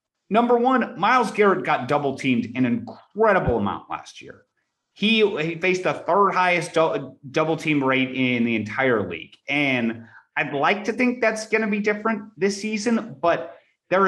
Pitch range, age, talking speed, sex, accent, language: 135-220 Hz, 30-49, 165 wpm, male, American, English